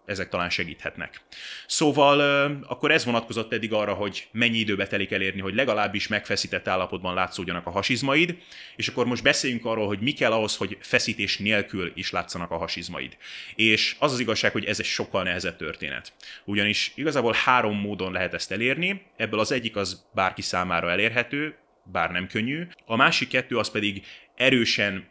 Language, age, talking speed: Hungarian, 30-49, 165 wpm